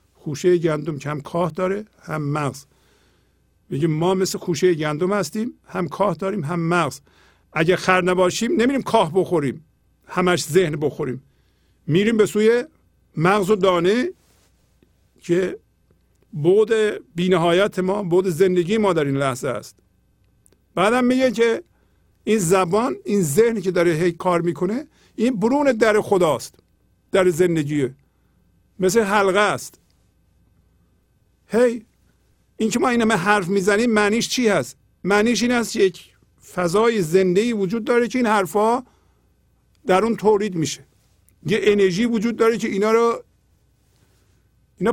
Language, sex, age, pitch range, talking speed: Persian, male, 50-69, 140-215 Hz, 135 wpm